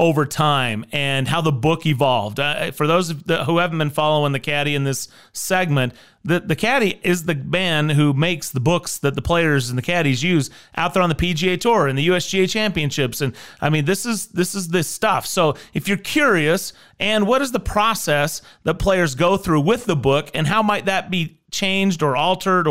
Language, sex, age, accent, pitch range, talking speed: English, male, 30-49, American, 145-190 Hz, 215 wpm